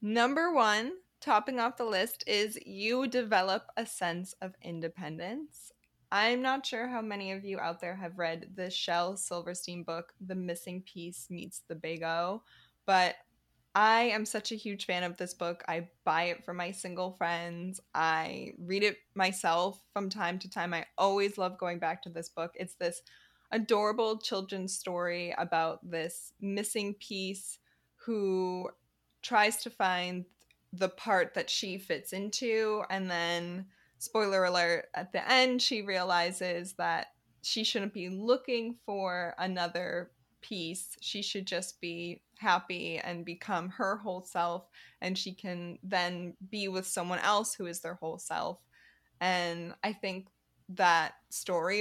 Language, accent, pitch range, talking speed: English, American, 175-210 Hz, 155 wpm